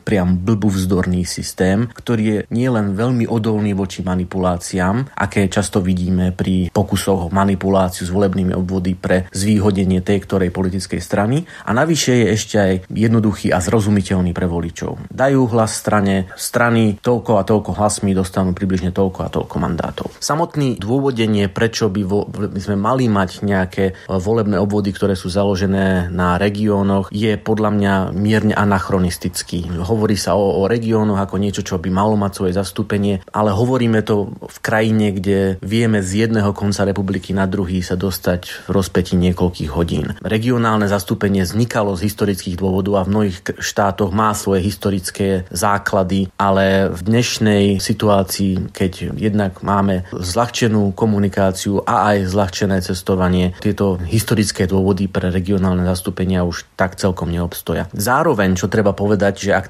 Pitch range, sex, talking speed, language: 95-105 Hz, male, 145 wpm, Slovak